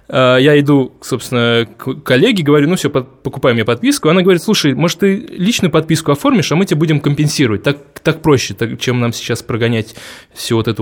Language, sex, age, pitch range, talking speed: Russian, male, 20-39, 120-165 Hz, 200 wpm